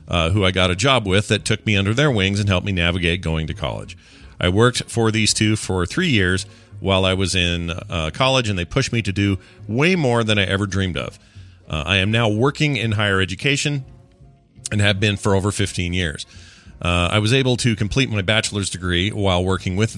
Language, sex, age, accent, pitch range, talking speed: English, male, 40-59, American, 90-120 Hz, 220 wpm